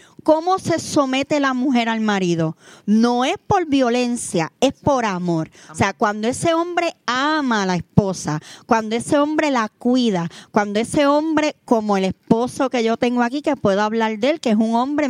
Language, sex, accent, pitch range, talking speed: Spanish, female, American, 220-290 Hz, 185 wpm